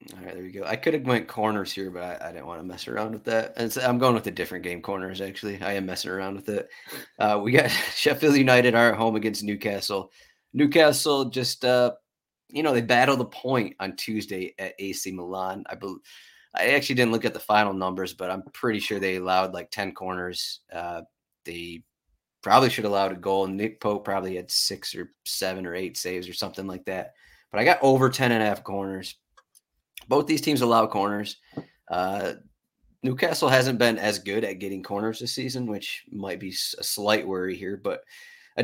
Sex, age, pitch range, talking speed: male, 30-49, 95-120 Hz, 210 wpm